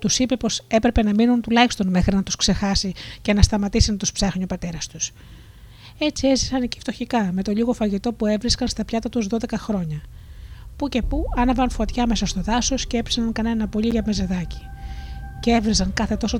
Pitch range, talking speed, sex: 180-225 Hz, 195 wpm, female